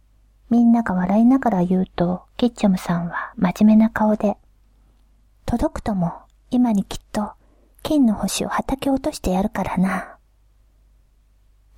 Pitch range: 195-255 Hz